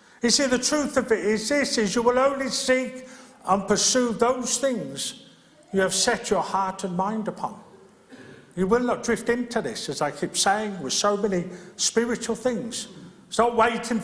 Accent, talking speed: British, 185 wpm